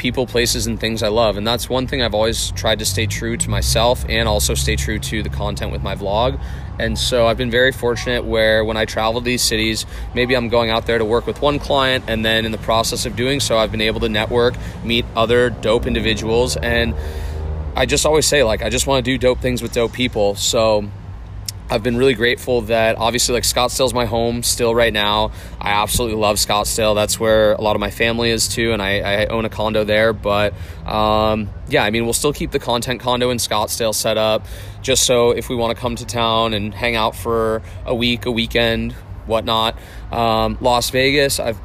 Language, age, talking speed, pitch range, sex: English, 20-39, 220 wpm, 105-120 Hz, male